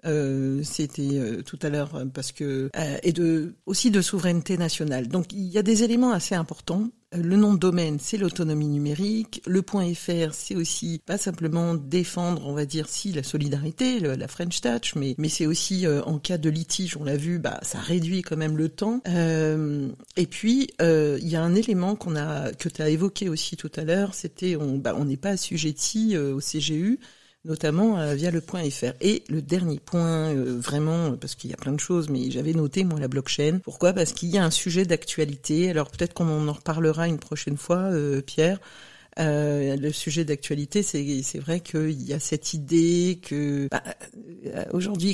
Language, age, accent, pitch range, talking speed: French, 50-69, French, 145-180 Hz, 205 wpm